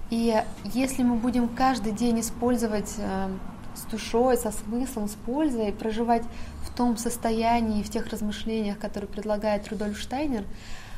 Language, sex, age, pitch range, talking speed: Russian, female, 20-39, 210-240 Hz, 135 wpm